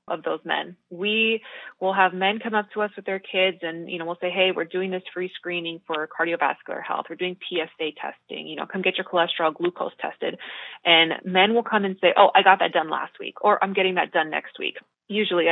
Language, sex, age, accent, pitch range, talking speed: English, female, 20-39, American, 175-215 Hz, 235 wpm